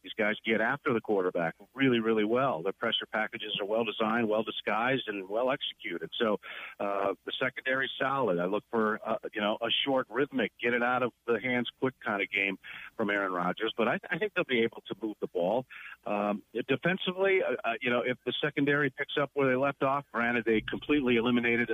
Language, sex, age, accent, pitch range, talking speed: English, male, 50-69, American, 105-135 Hz, 215 wpm